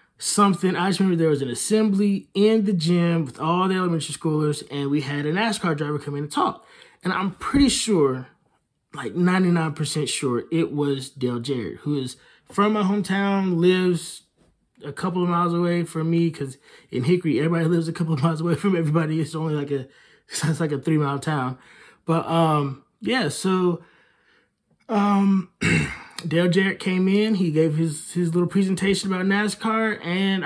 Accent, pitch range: American, 145-195 Hz